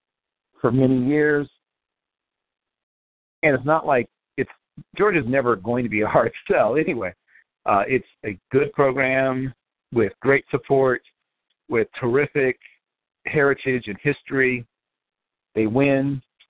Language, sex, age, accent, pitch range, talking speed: English, male, 50-69, American, 105-140 Hz, 120 wpm